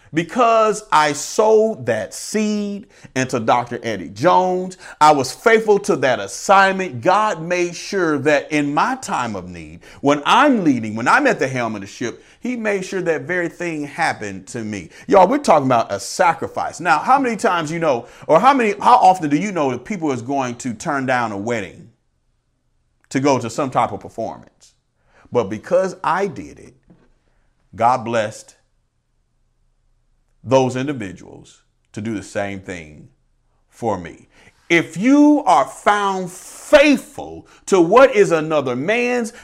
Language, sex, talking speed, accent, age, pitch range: English, male, 160 wpm, American, 40-59, 125-205 Hz